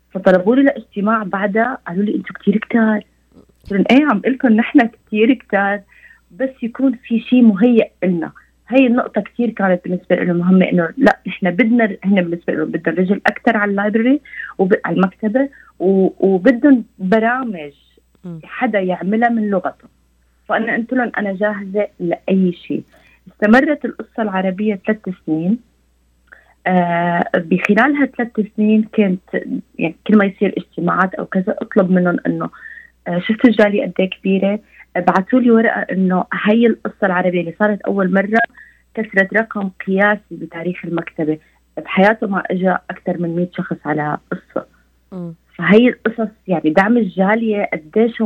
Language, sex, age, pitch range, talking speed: Arabic, female, 30-49, 180-230 Hz, 140 wpm